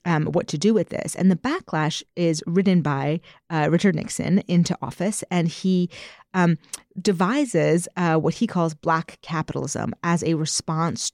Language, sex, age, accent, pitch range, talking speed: English, female, 30-49, American, 165-215 Hz, 160 wpm